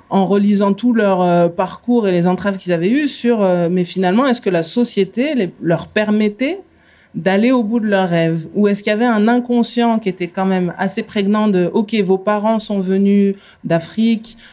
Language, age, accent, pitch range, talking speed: French, 20-39, French, 180-210 Hz, 205 wpm